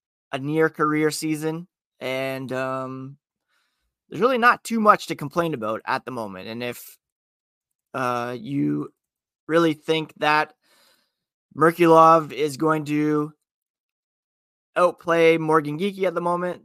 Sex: male